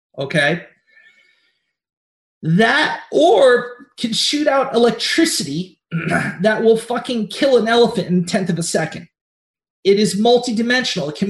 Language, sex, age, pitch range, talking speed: English, male, 30-49, 185-255 Hz, 120 wpm